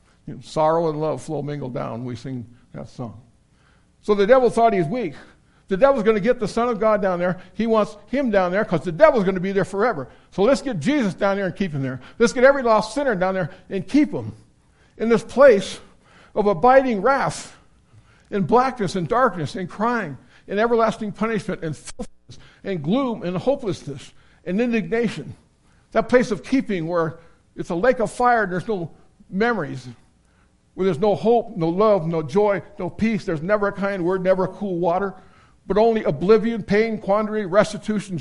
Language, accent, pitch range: English, American, 170-220 Hz